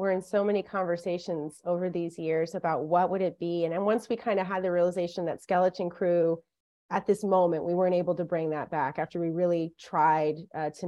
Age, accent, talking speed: 30-49, American, 225 wpm